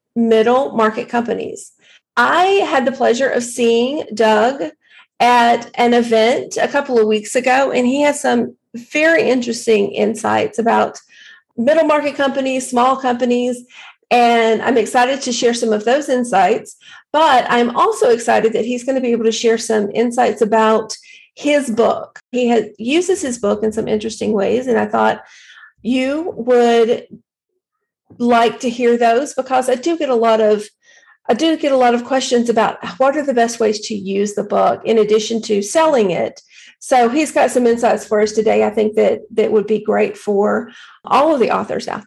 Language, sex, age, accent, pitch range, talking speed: English, female, 40-59, American, 225-275 Hz, 175 wpm